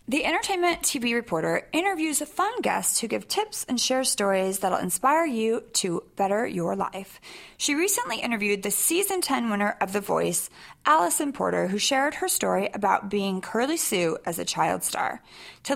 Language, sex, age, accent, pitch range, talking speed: English, female, 30-49, American, 200-300 Hz, 175 wpm